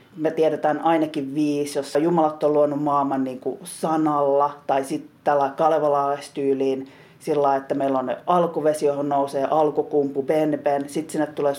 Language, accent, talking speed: Finnish, native, 160 wpm